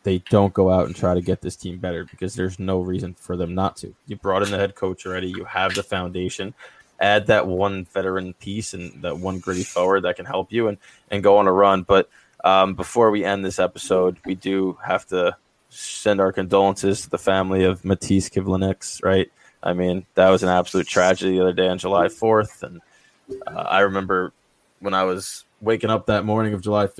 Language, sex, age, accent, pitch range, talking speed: English, male, 20-39, American, 95-100 Hz, 220 wpm